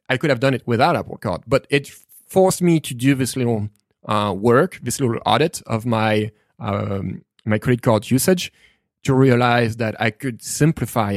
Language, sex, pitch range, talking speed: English, male, 110-140 Hz, 190 wpm